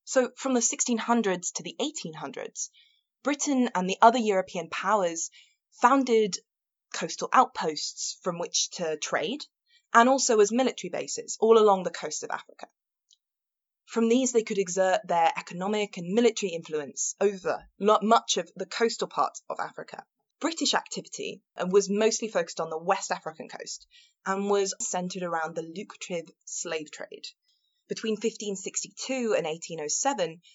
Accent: British